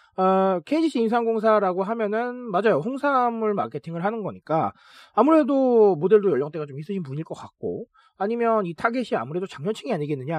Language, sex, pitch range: Korean, male, 160-230 Hz